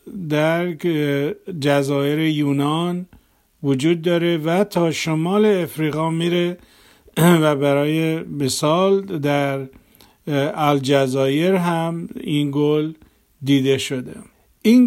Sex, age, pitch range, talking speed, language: male, 50-69, 140-170 Hz, 85 wpm, Persian